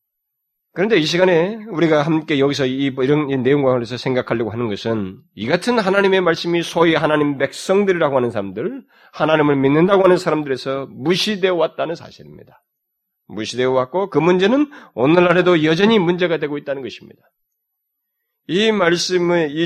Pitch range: 140-180 Hz